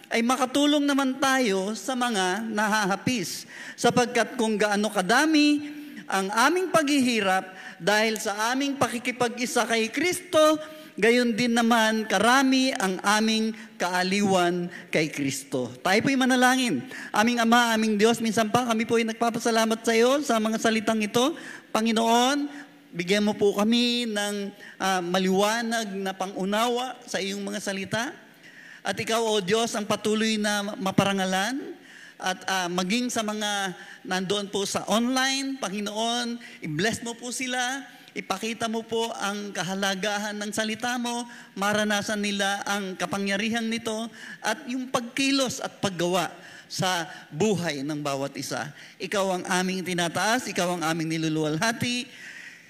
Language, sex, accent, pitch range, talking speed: Filipino, male, native, 195-245 Hz, 130 wpm